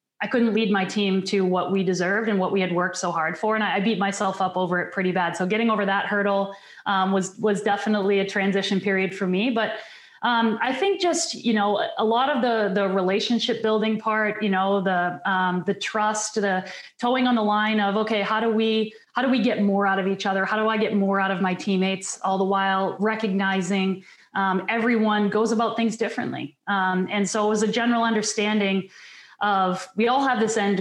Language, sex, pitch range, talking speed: English, female, 190-220 Hz, 220 wpm